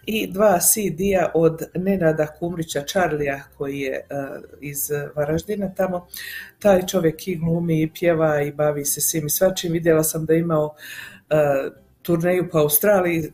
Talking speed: 150 wpm